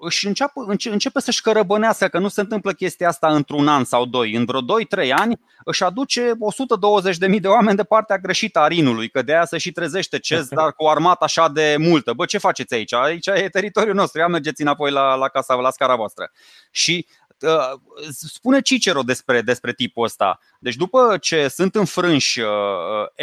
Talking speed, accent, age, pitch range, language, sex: 185 wpm, native, 30-49, 155-225 Hz, Romanian, male